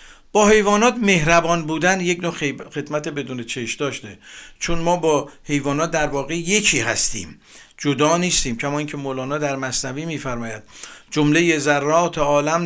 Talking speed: 140 wpm